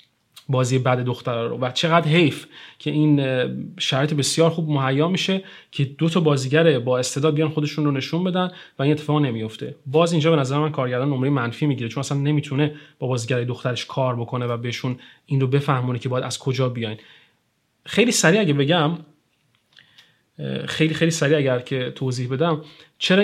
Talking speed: 175 wpm